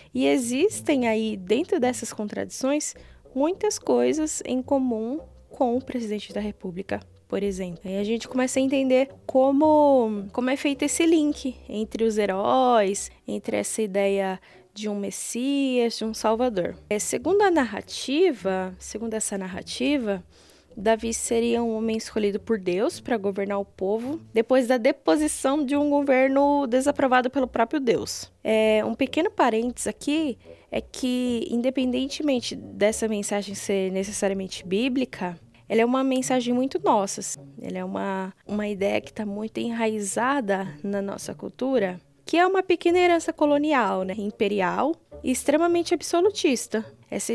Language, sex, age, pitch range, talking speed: Portuguese, female, 10-29, 200-275 Hz, 140 wpm